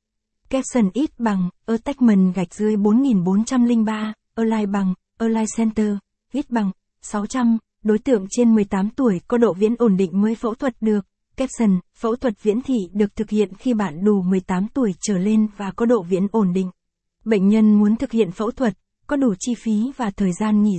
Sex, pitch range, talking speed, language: female, 200-240 Hz, 185 wpm, Vietnamese